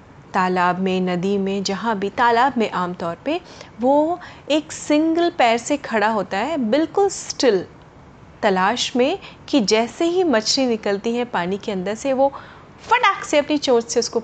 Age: 30-49